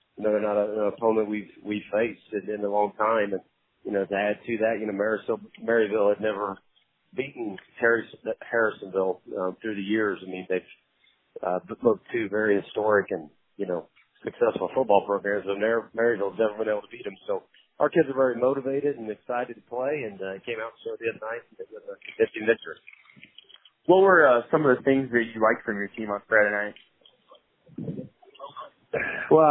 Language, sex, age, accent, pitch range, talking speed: English, male, 30-49, American, 100-115 Hz, 200 wpm